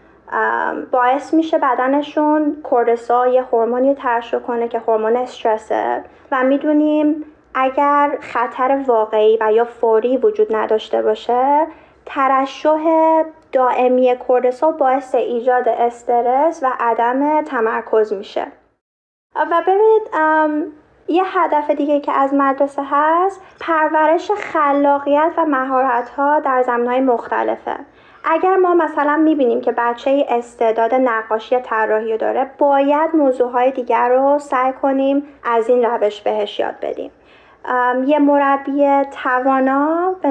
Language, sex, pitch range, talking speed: Persian, female, 245-305 Hz, 115 wpm